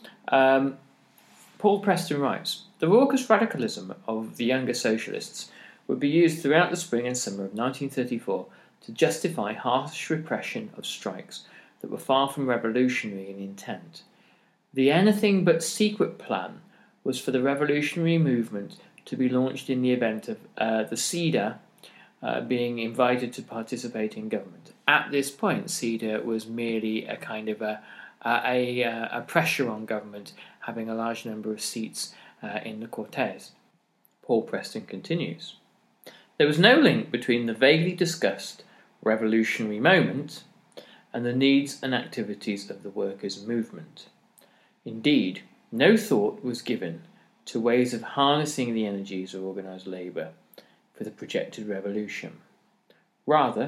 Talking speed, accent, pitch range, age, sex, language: 140 wpm, British, 110-140 Hz, 40-59, male, English